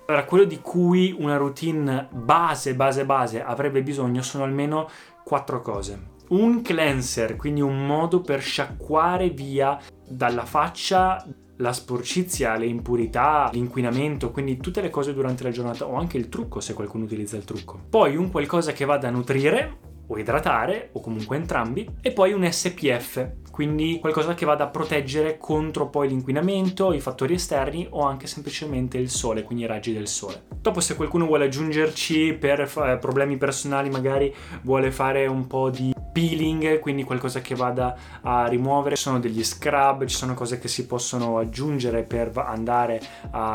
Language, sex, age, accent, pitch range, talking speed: Italian, male, 20-39, native, 125-155 Hz, 165 wpm